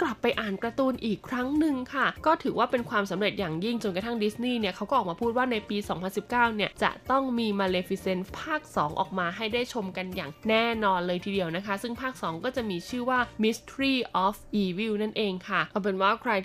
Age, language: 20-39, Thai